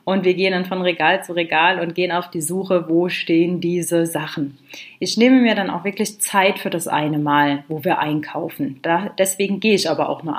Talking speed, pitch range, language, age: 215 wpm, 170-200 Hz, German, 30-49